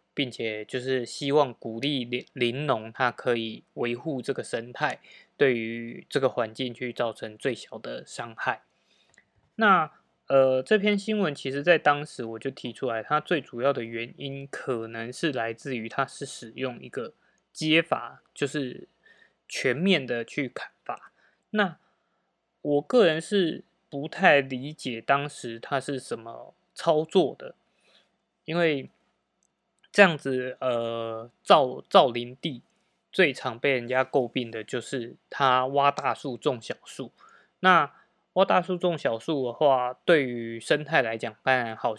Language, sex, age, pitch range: Chinese, male, 20-39, 120-155 Hz